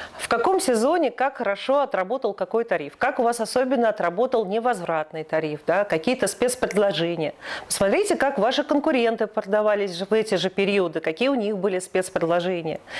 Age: 40-59